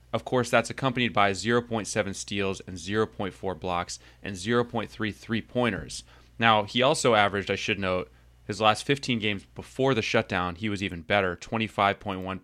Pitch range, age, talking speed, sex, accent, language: 95-115 Hz, 30-49, 155 wpm, male, American, English